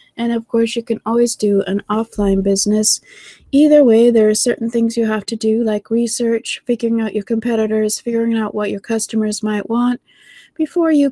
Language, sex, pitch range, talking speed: English, female, 215-245 Hz, 190 wpm